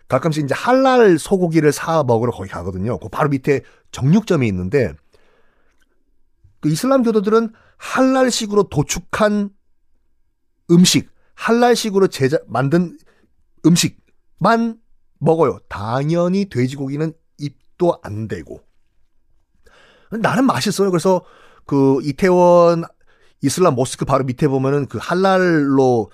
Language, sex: Korean, male